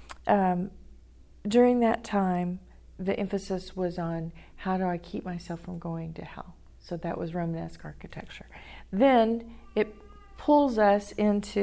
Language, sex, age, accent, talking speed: English, female, 40-59, American, 140 wpm